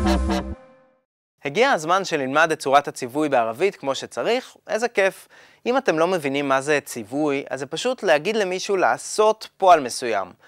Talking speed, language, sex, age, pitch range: 150 wpm, Hebrew, male, 20-39, 145-215 Hz